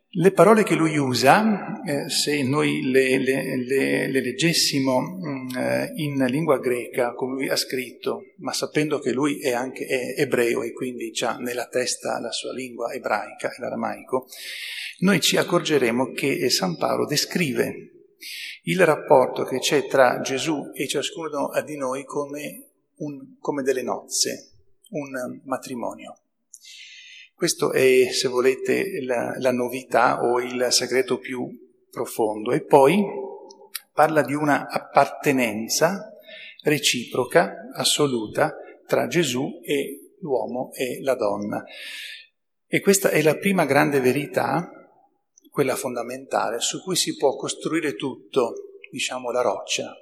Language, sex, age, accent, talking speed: Italian, male, 40-59, native, 125 wpm